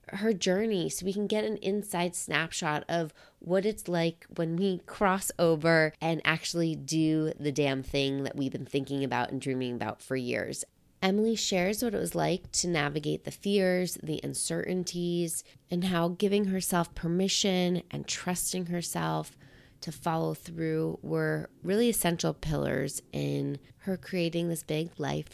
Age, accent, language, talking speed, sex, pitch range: 20-39, American, English, 155 wpm, female, 145-185 Hz